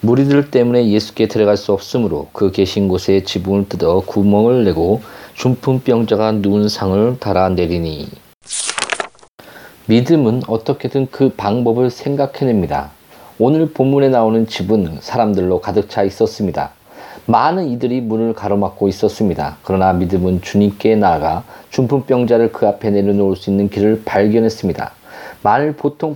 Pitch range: 100-130 Hz